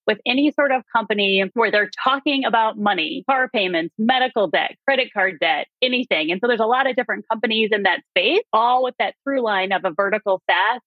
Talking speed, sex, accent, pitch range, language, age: 210 wpm, female, American, 195-255 Hz, English, 30-49